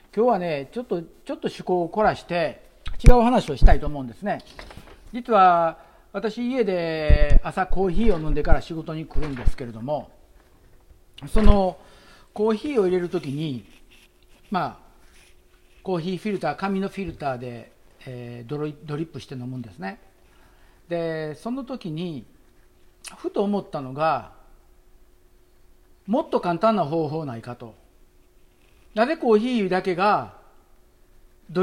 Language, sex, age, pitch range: Japanese, male, 50-69, 140-215 Hz